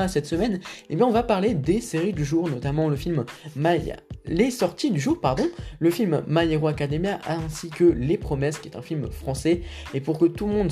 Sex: male